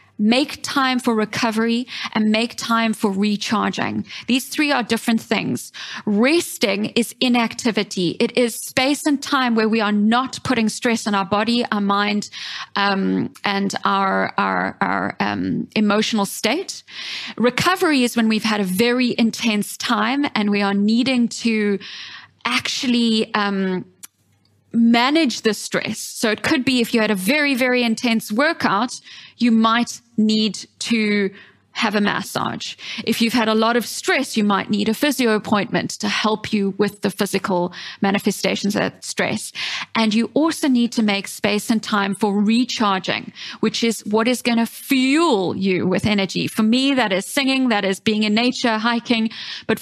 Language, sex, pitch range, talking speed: English, female, 205-245 Hz, 165 wpm